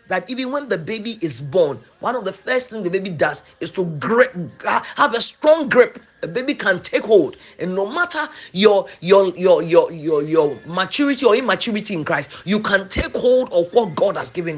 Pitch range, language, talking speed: 190-280 Hz, English, 205 wpm